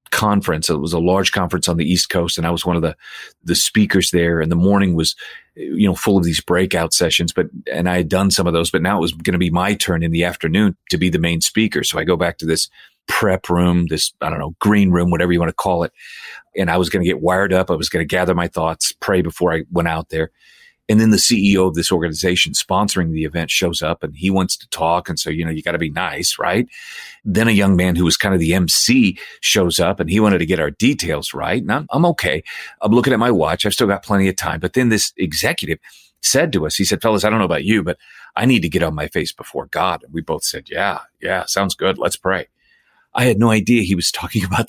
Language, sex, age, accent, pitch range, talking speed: English, male, 40-59, American, 85-100 Hz, 270 wpm